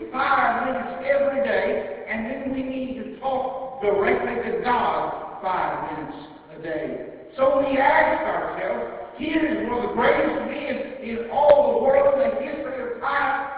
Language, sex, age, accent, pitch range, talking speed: English, male, 60-79, American, 210-275 Hz, 165 wpm